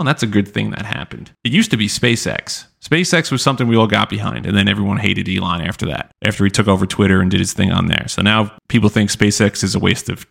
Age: 30-49